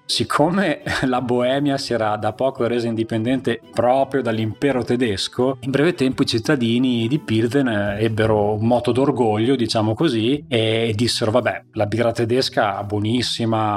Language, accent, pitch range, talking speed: Italian, native, 105-125 Hz, 145 wpm